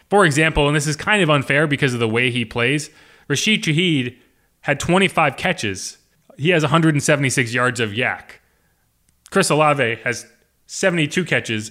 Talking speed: 155 wpm